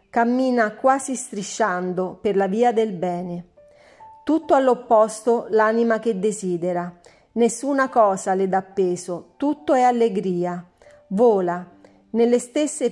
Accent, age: native, 40-59